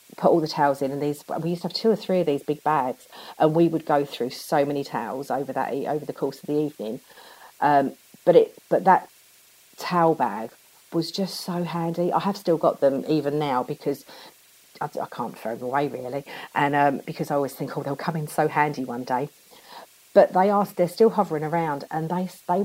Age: 40-59